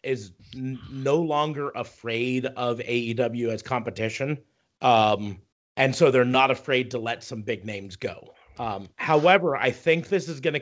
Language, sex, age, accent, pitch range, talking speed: English, male, 40-59, American, 120-160 Hz, 155 wpm